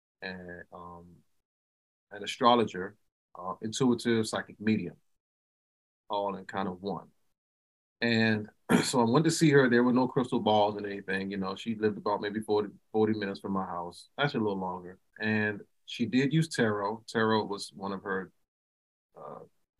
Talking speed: 165 wpm